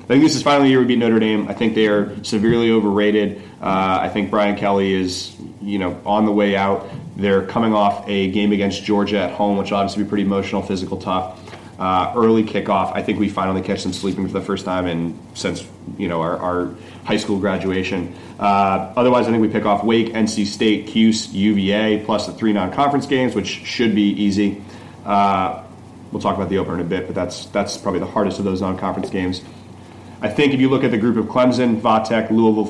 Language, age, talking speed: English, 30-49, 220 wpm